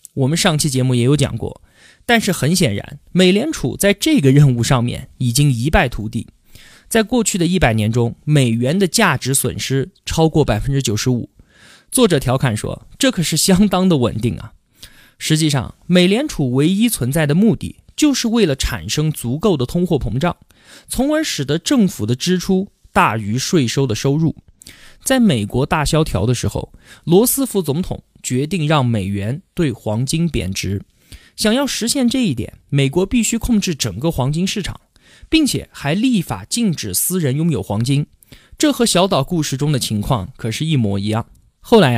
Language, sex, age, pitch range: Chinese, male, 20-39, 125-190 Hz